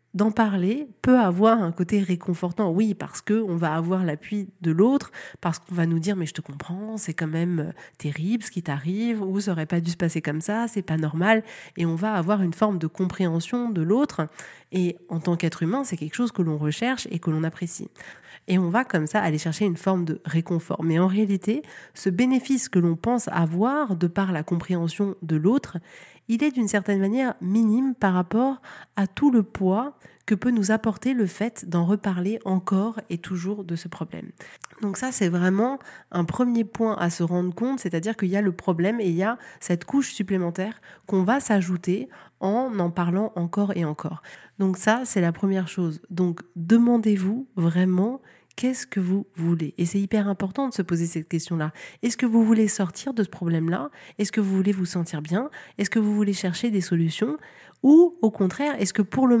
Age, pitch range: 30-49, 175-225 Hz